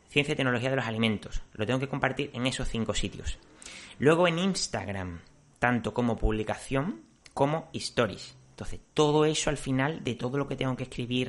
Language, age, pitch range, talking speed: Spanish, 30-49, 105-135 Hz, 180 wpm